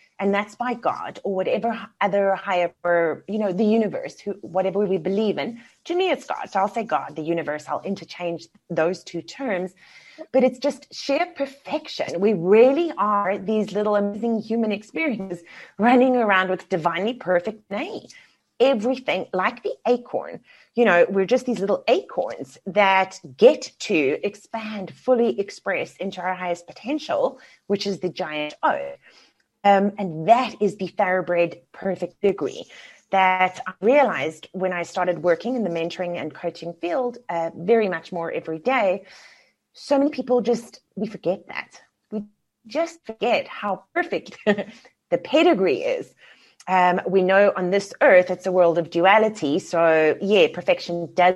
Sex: female